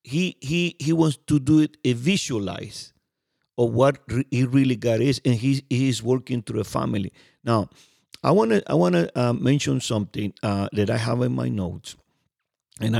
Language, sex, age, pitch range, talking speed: English, male, 50-69, 110-135 Hz, 185 wpm